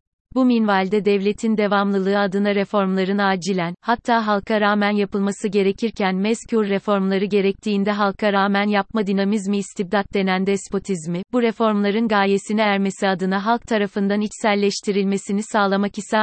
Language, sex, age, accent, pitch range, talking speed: Turkish, female, 30-49, native, 195-215 Hz, 120 wpm